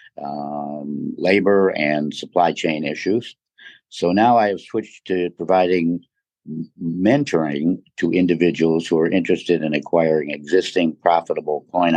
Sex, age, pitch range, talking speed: male, 60-79, 75-90 Hz, 120 wpm